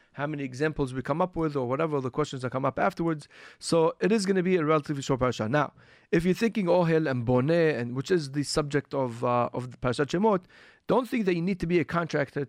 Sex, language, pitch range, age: male, English, 135-175 Hz, 40-59